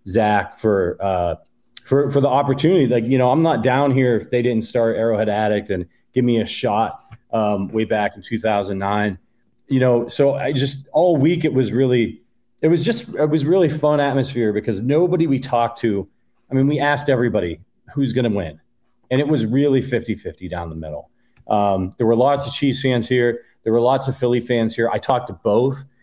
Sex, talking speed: male, 205 wpm